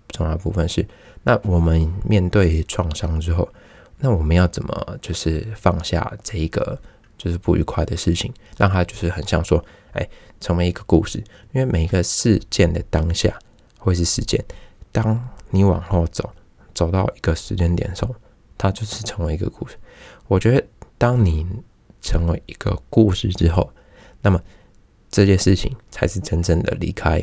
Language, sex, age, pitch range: Chinese, male, 20-39, 85-105 Hz